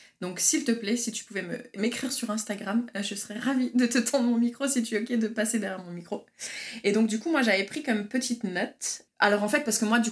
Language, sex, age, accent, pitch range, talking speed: French, female, 20-39, French, 180-230 Hz, 265 wpm